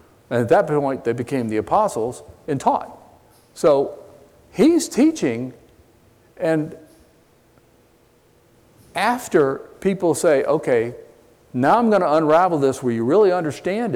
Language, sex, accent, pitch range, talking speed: English, male, American, 110-150 Hz, 120 wpm